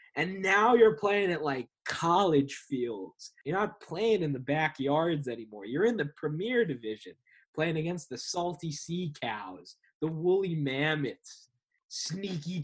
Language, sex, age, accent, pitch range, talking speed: English, male, 20-39, American, 145-210 Hz, 140 wpm